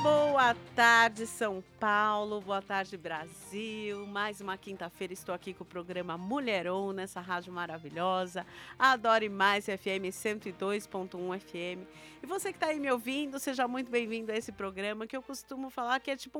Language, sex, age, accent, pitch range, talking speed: Portuguese, female, 50-69, Brazilian, 200-260 Hz, 160 wpm